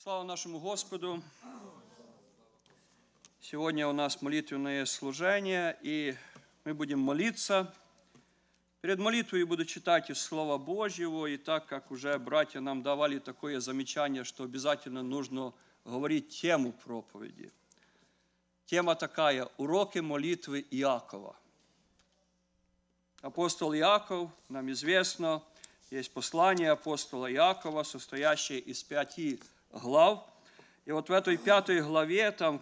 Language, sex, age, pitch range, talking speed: English, male, 50-69, 140-195 Hz, 110 wpm